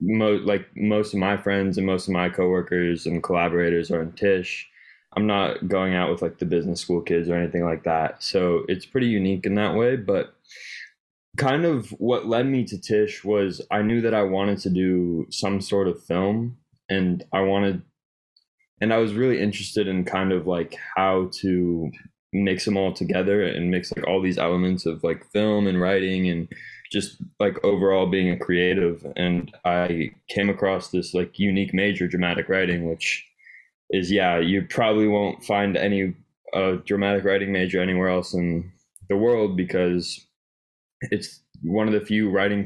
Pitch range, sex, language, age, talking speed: 90-100 Hz, male, English, 20-39, 180 wpm